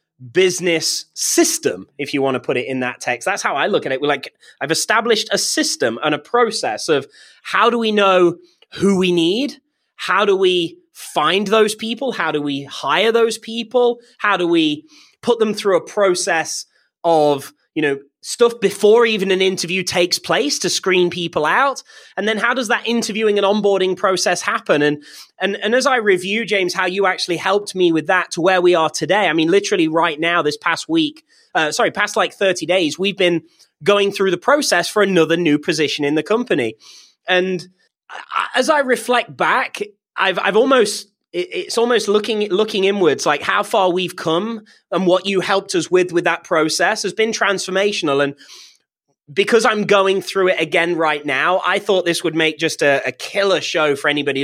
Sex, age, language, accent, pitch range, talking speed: male, 20-39, English, British, 165-220 Hz, 195 wpm